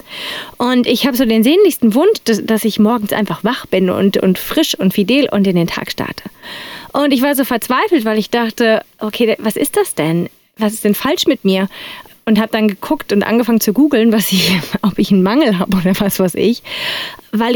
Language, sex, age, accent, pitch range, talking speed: German, female, 30-49, German, 195-250 Hz, 215 wpm